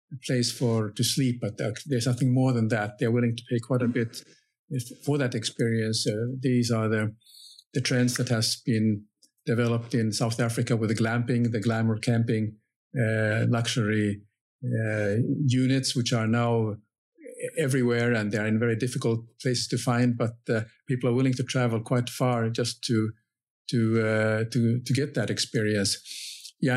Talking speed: 170 wpm